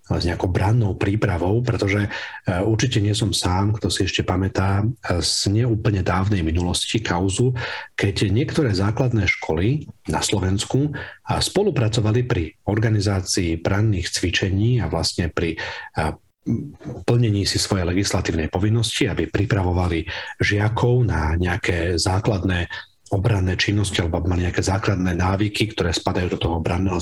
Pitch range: 90-110 Hz